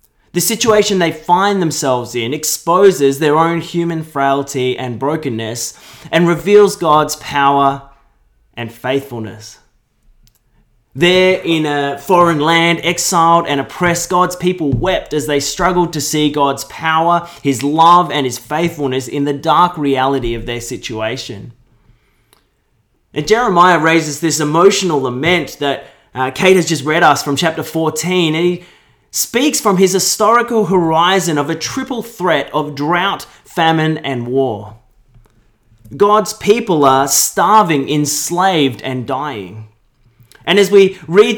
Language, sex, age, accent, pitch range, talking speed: English, male, 20-39, Australian, 135-175 Hz, 130 wpm